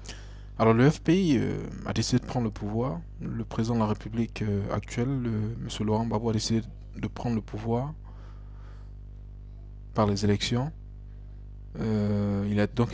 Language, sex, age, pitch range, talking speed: French, male, 20-39, 100-115 Hz, 155 wpm